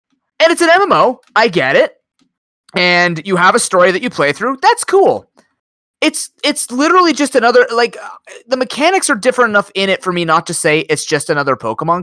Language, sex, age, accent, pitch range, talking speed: English, male, 20-39, American, 130-205 Hz, 200 wpm